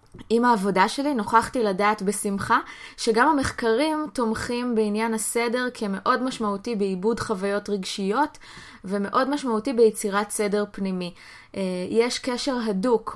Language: Hebrew